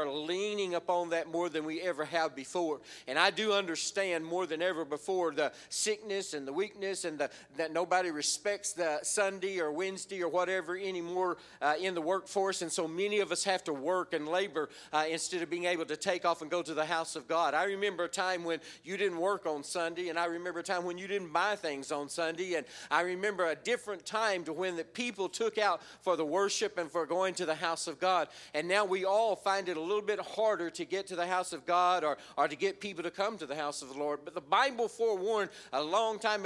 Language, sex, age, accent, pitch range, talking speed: English, male, 40-59, American, 165-205 Hz, 240 wpm